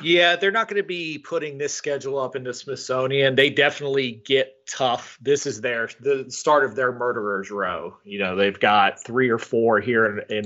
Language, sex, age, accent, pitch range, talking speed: English, male, 30-49, American, 110-135 Hz, 200 wpm